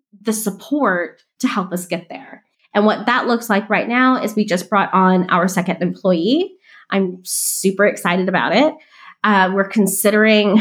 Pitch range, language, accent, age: 195-225 Hz, English, American, 20-39